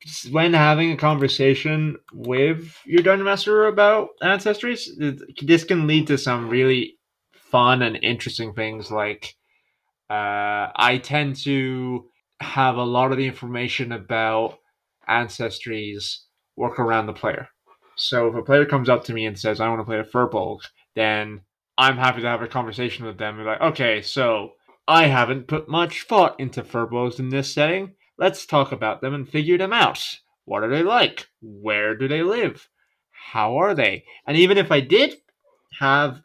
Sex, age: male, 20-39